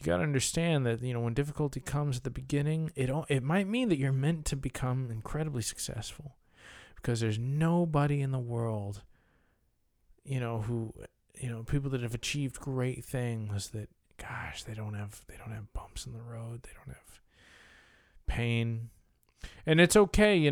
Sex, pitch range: male, 115-150 Hz